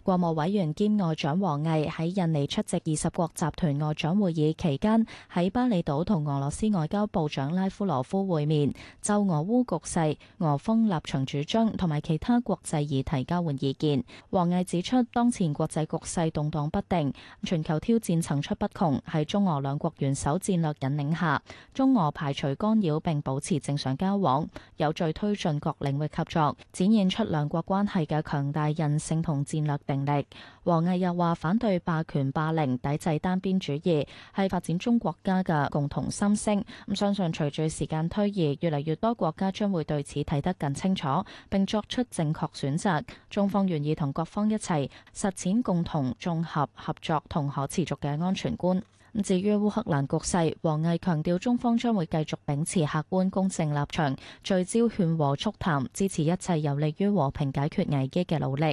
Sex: female